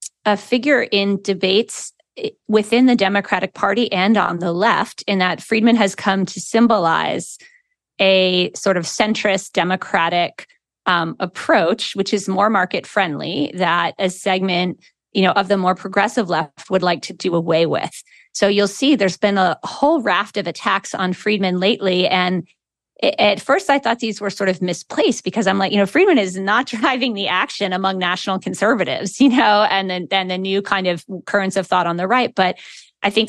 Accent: American